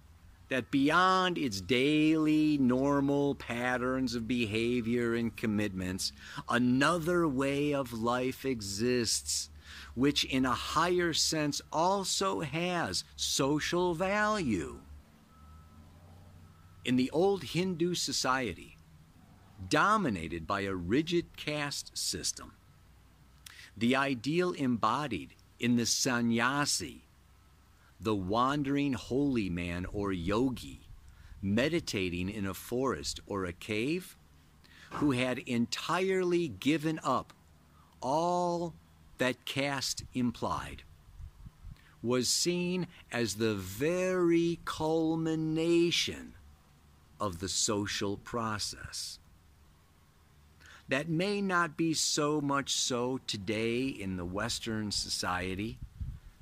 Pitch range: 85-145 Hz